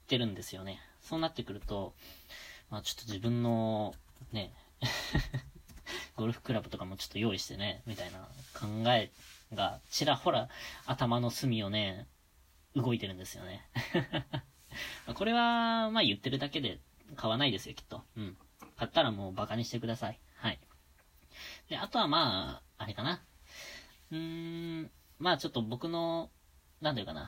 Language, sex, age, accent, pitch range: Japanese, female, 20-39, native, 100-130 Hz